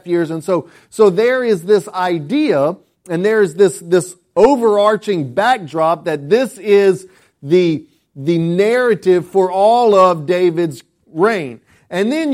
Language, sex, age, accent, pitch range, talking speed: English, male, 40-59, American, 170-210 Hz, 135 wpm